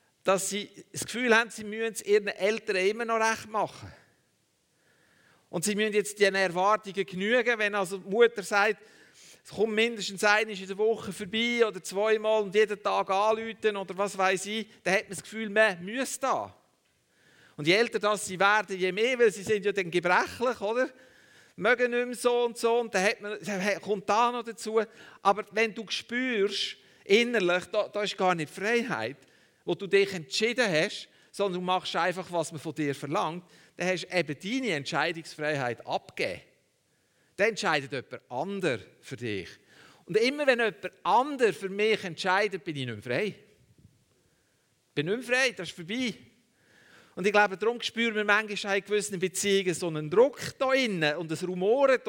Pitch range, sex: 185-225 Hz, male